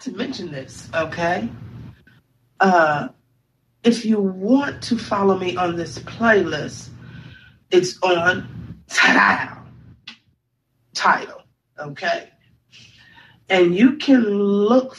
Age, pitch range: 40-59, 125-190 Hz